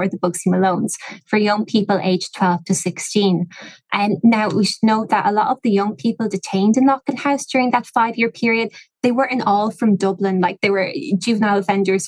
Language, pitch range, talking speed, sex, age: English, 185-215 Hz, 210 wpm, female, 20-39